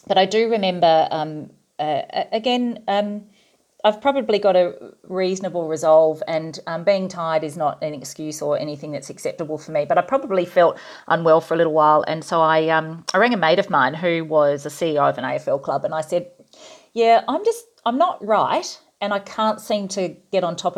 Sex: female